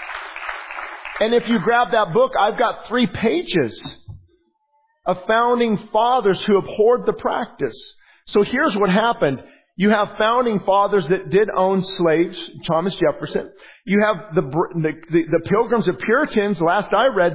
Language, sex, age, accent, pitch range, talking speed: English, male, 40-59, American, 170-225 Hz, 145 wpm